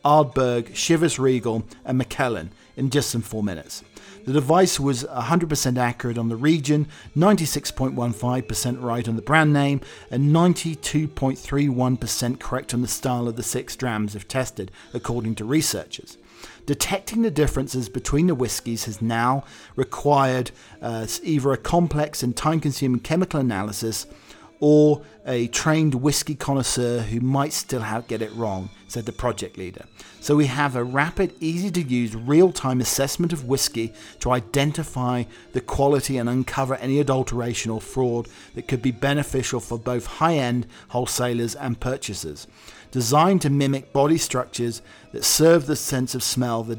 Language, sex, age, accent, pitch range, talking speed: English, male, 40-59, British, 120-145 Hz, 145 wpm